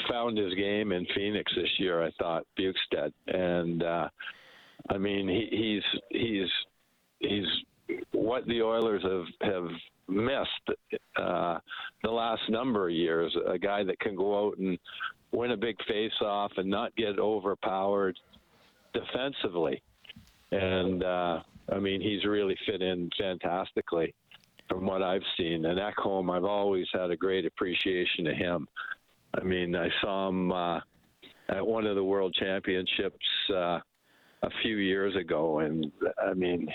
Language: English